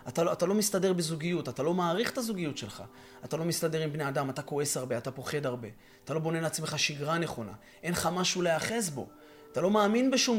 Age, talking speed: 20-39, 225 wpm